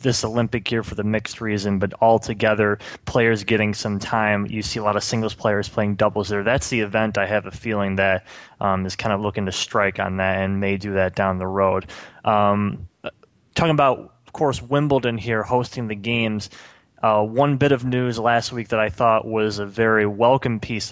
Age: 20-39